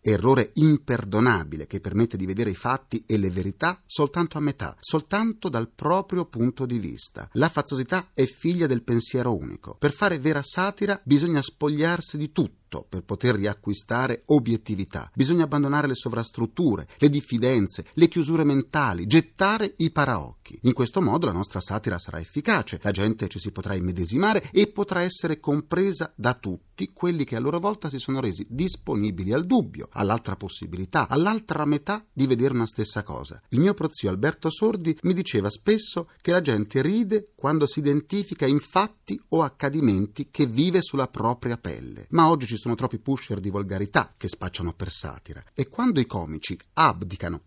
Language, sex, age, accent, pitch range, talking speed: Italian, male, 40-59, native, 105-165 Hz, 165 wpm